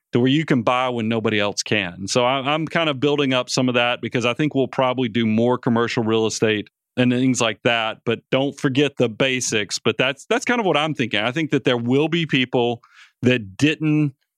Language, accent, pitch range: English, American, 125-160 Hz